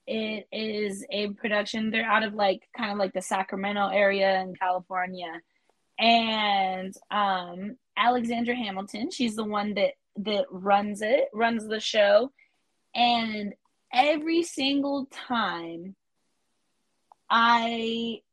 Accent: American